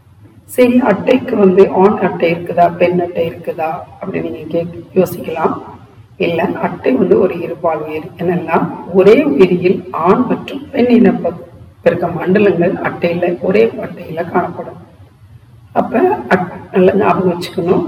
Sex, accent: female, native